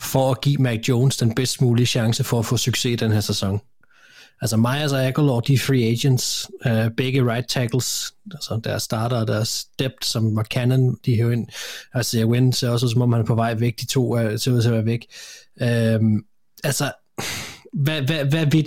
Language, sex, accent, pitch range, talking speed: Danish, male, native, 120-140 Hz, 215 wpm